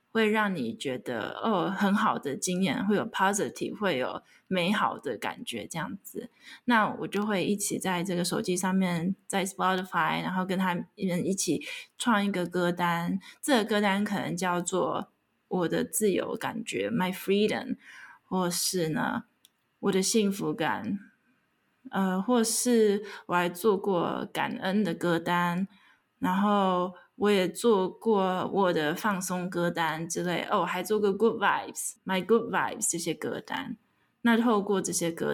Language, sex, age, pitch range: Chinese, female, 20-39, 180-215 Hz